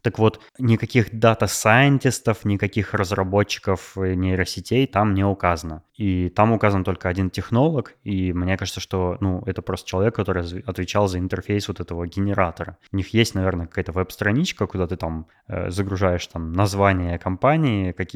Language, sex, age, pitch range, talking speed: Russian, male, 20-39, 90-110 Hz, 145 wpm